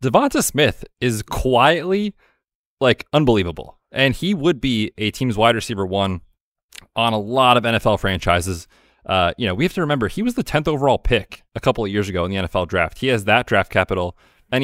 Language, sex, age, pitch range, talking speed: English, male, 30-49, 95-125 Hz, 200 wpm